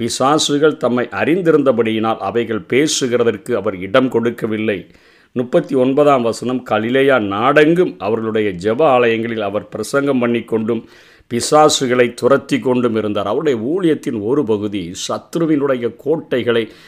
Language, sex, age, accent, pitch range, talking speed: Tamil, male, 50-69, native, 110-135 Hz, 105 wpm